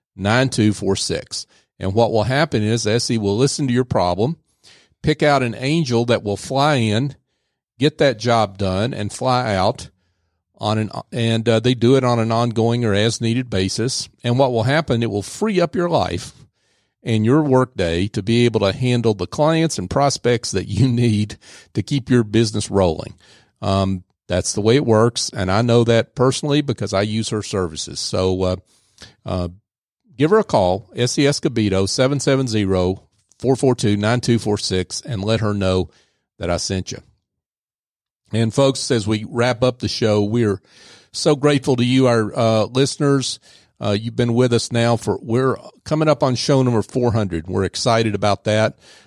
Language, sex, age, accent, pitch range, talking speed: English, male, 40-59, American, 105-125 Hz, 170 wpm